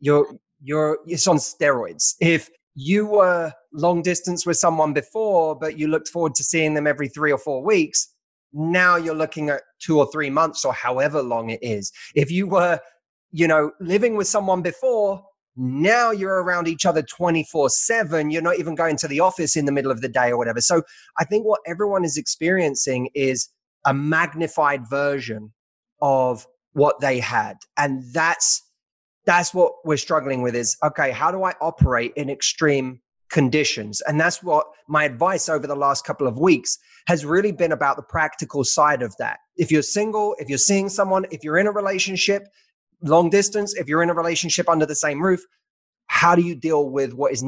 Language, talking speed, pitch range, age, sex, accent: English, 190 wpm, 140-175 Hz, 20-39, male, British